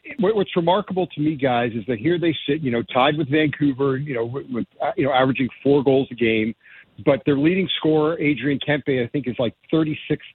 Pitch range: 125-165 Hz